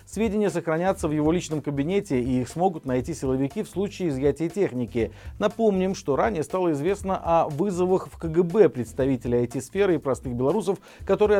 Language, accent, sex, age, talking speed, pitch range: Russian, native, male, 40-59, 160 wpm, 140-185 Hz